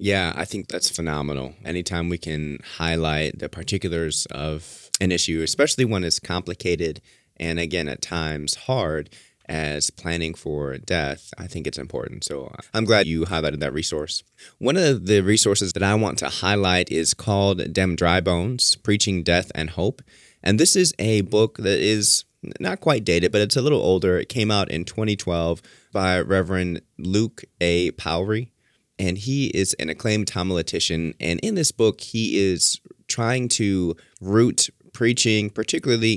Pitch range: 85-105 Hz